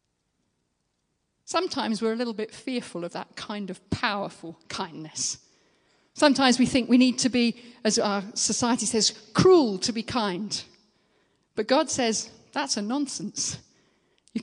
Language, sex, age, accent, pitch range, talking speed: English, female, 40-59, British, 195-240 Hz, 140 wpm